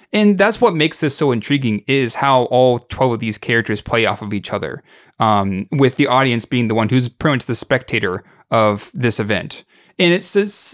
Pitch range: 115-150 Hz